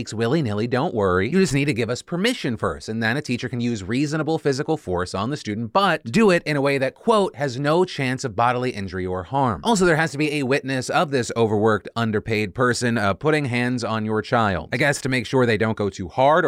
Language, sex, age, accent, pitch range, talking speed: English, male, 30-49, American, 110-150 Hz, 245 wpm